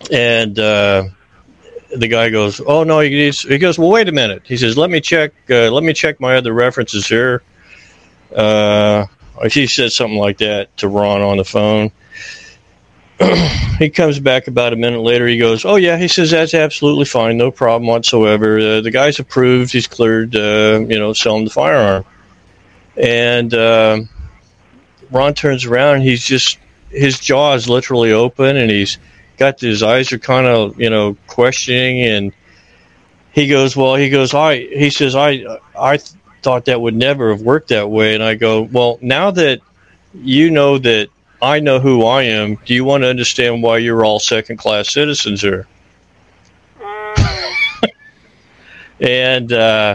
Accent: American